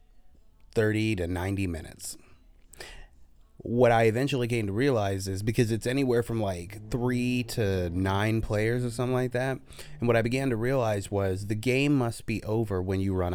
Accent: American